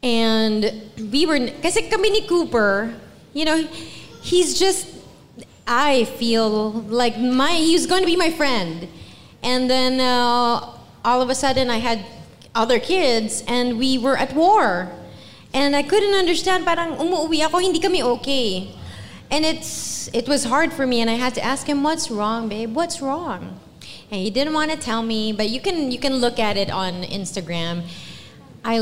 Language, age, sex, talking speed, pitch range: English, 20-39, female, 170 wpm, 210-290 Hz